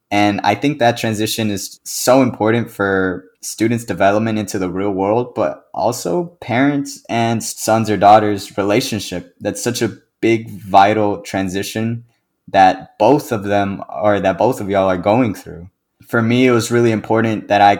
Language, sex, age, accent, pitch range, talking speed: English, male, 20-39, American, 100-115 Hz, 165 wpm